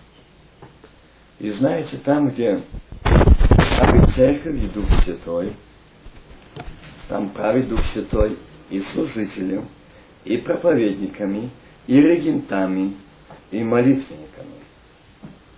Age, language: 50-69, Russian